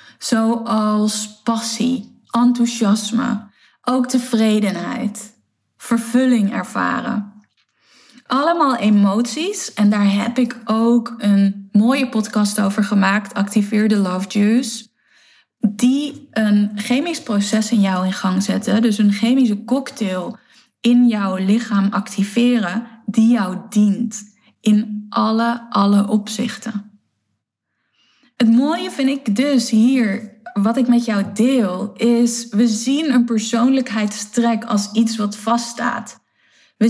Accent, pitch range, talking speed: Dutch, 210-240 Hz, 110 wpm